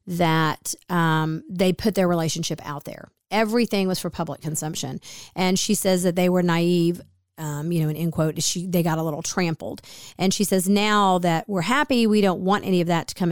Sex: female